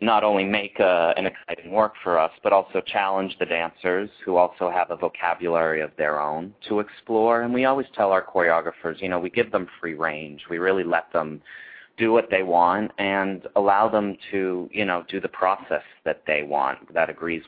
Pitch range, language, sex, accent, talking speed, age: 80-95 Hz, English, male, American, 205 wpm, 30-49